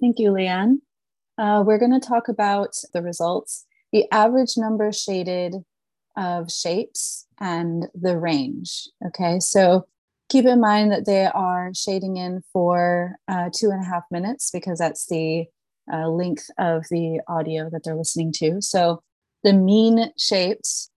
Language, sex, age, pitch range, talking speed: English, female, 30-49, 165-210 Hz, 150 wpm